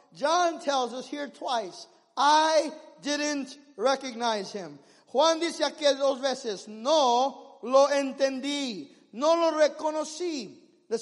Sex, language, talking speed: male, English, 115 wpm